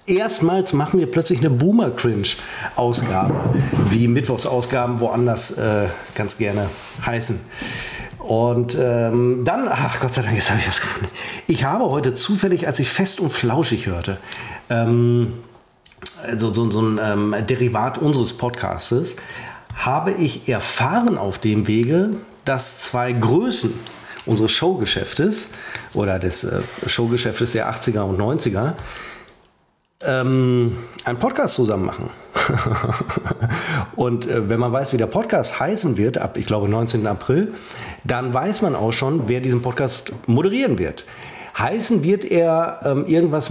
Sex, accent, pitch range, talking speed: male, German, 110-140 Hz, 135 wpm